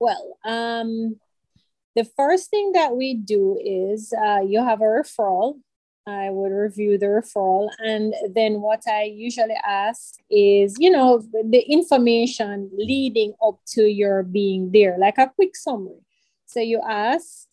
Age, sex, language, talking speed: 30-49, female, English, 150 wpm